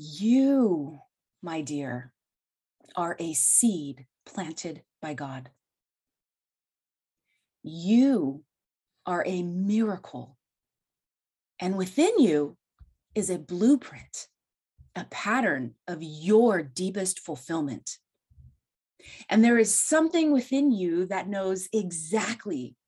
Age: 30-49